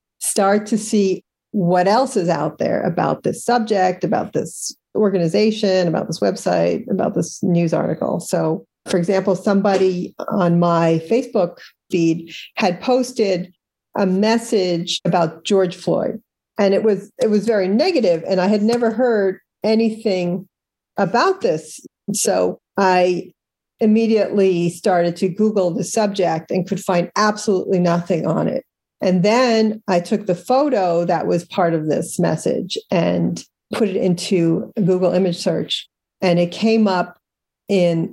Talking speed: 140 wpm